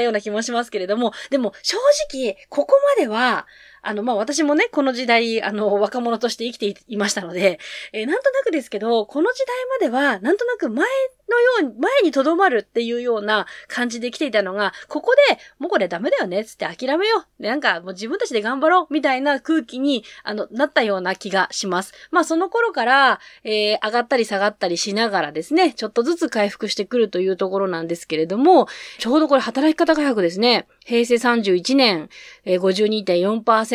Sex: female